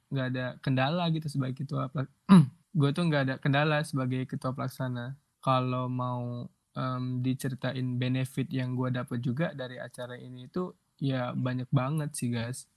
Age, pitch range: 20-39, 125-145 Hz